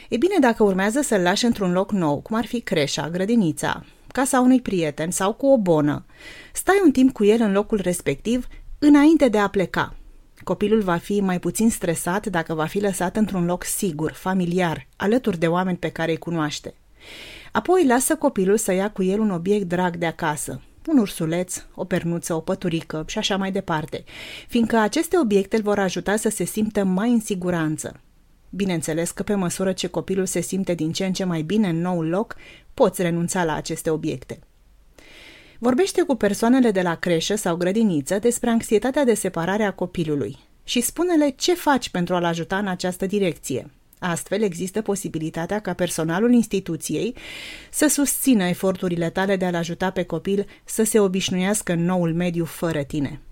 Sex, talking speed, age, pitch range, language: female, 175 wpm, 30-49, 170-215 Hz, Romanian